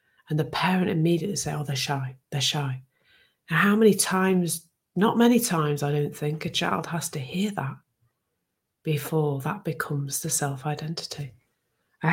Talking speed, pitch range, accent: 160 wpm, 135-165 Hz, British